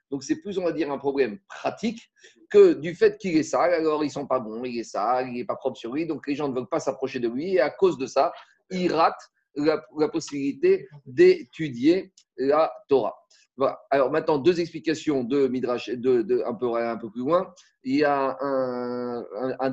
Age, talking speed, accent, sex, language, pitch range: 30-49, 220 wpm, French, male, French, 130-175 Hz